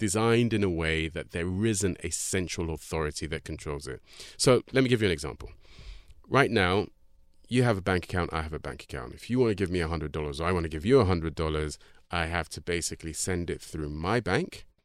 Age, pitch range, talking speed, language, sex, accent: 30-49, 85-115 Hz, 235 wpm, English, male, British